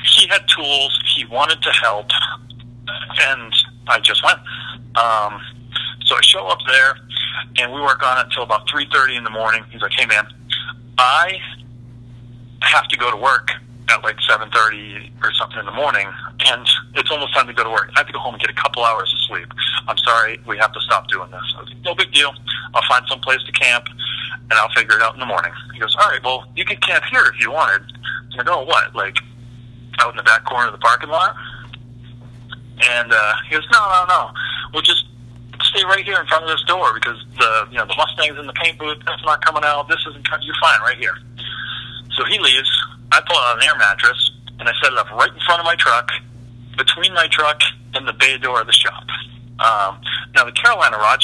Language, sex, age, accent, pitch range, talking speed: English, male, 40-59, American, 120-145 Hz, 225 wpm